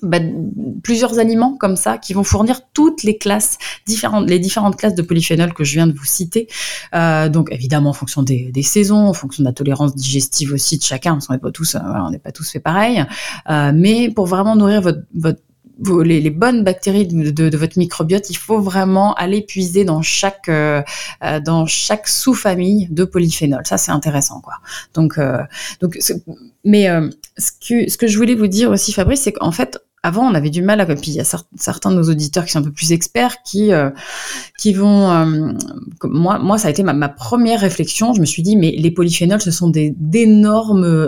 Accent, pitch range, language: French, 155-205 Hz, French